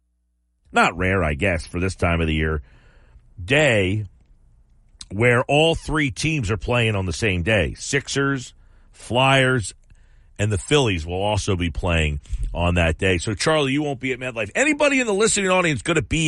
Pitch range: 85-145 Hz